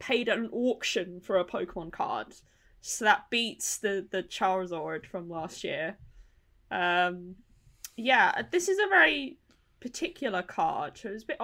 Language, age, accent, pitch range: English, 10-29, British, 190-240 Hz